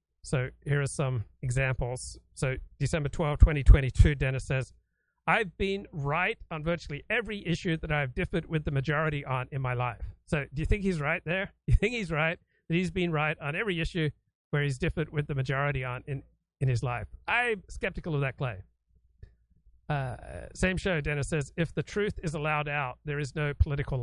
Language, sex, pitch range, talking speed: English, male, 130-155 Hz, 190 wpm